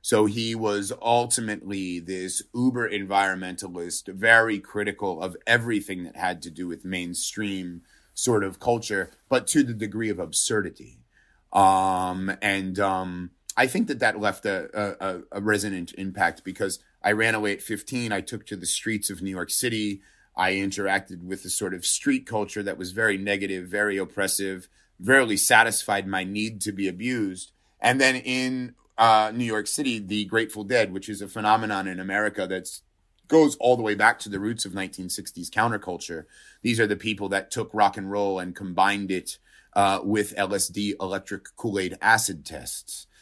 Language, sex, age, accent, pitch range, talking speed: English, male, 30-49, American, 95-110 Hz, 170 wpm